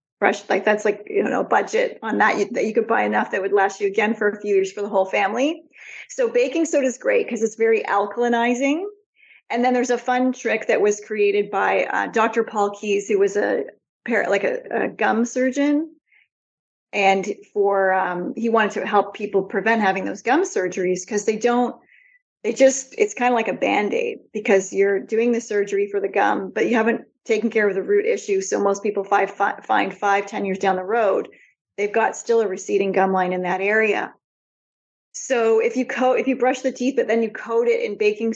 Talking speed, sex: 210 wpm, female